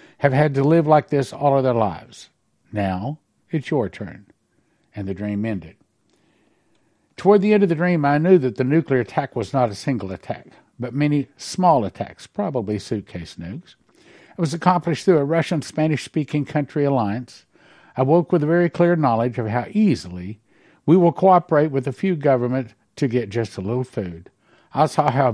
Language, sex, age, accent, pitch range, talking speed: English, male, 60-79, American, 110-150 Hz, 180 wpm